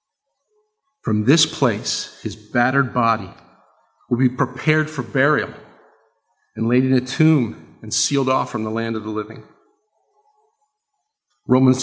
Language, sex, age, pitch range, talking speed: English, male, 50-69, 120-170 Hz, 130 wpm